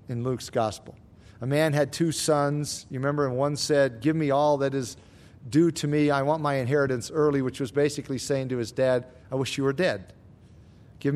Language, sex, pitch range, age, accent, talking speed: English, male, 130-185 Hz, 50-69, American, 210 wpm